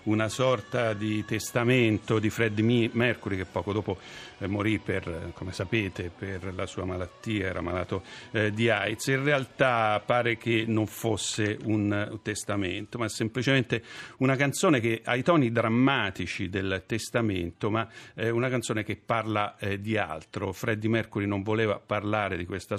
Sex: male